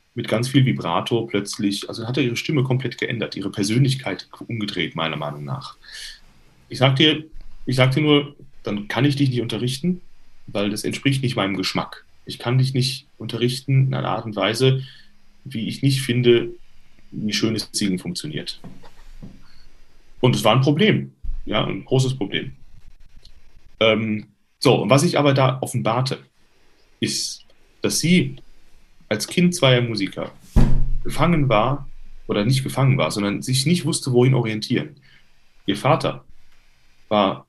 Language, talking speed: German, 150 wpm